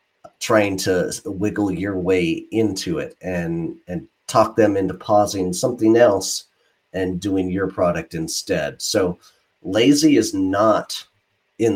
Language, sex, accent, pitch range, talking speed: English, male, American, 90-115 Hz, 130 wpm